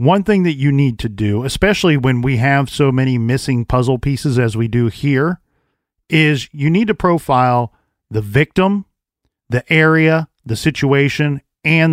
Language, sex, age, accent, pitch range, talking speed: English, male, 40-59, American, 125-165 Hz, 160 wpm